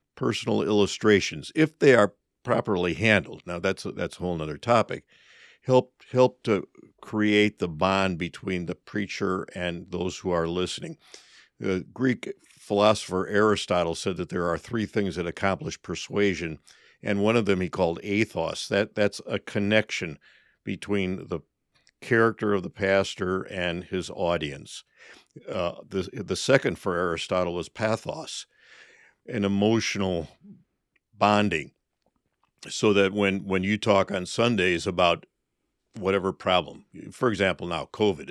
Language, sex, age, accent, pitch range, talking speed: English, male, 60-79, American, 90-110 Hz, 135 wpm